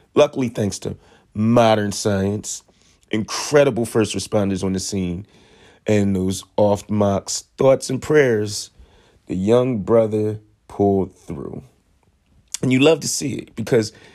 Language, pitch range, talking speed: English, 95-130 Hz, 125 wpm